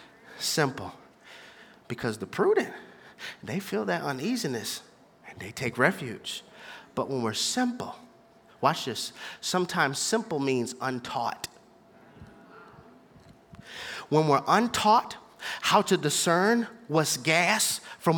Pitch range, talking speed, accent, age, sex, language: 165-220 Hz, 100 wpm, American, 30-49, male, English